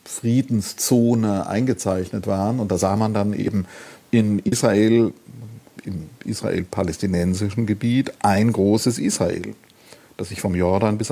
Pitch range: 95-115 Hz